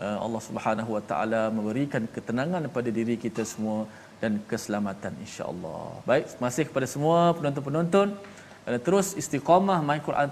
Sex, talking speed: male, 130 wpm